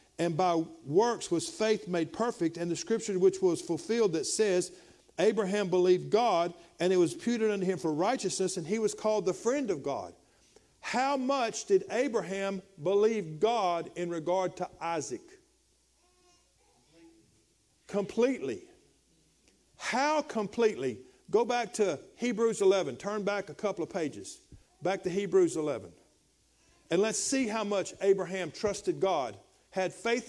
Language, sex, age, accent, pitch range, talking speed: English, male, 50-69, American, 175-225 Hz, 145 wpm